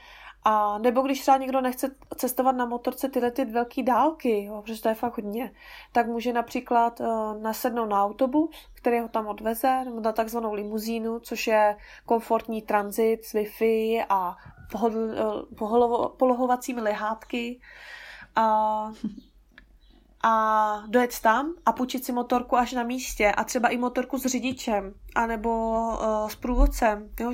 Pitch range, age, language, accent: 220-250 Hz, 20-39, Czech, native